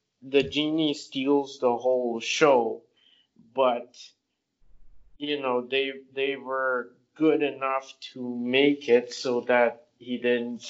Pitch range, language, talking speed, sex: 125-145 Hz, English, 120 wpm, male